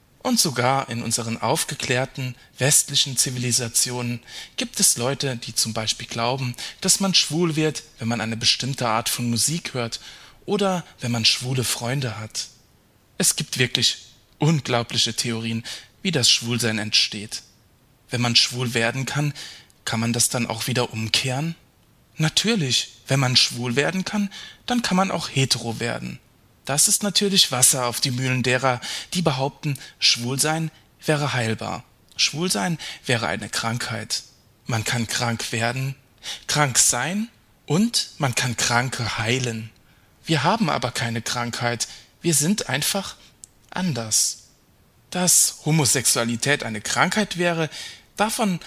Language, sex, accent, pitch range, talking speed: German, male, German, 115-155 Hz, 135 wpm